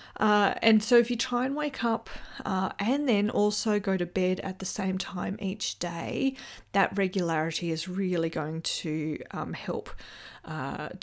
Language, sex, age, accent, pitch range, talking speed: English, female, 30-49, Australian, 175-230 Hz, 170 wpm